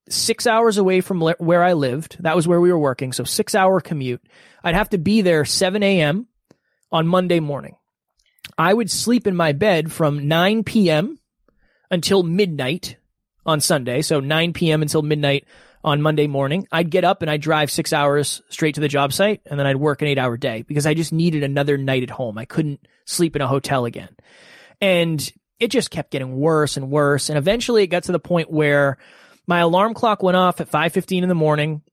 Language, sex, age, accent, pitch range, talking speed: English, male, 20-39, American, 150-185 Hz, 205 wpm